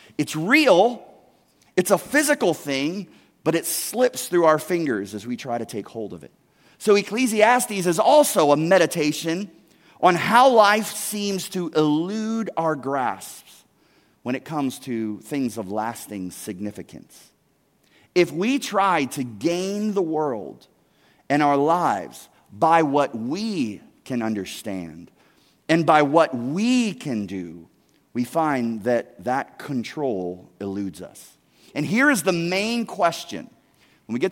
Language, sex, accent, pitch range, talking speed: English, male, American, 120-195 Hz, 140 wpm